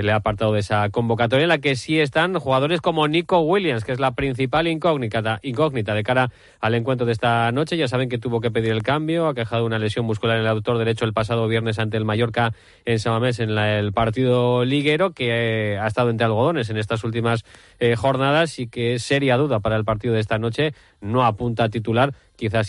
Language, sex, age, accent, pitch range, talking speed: Spanish, male, 20-39, Spanish, 105-140 Hz, 225 wpm